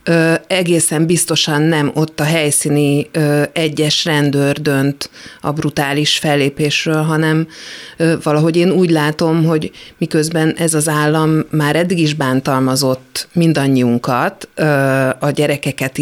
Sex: female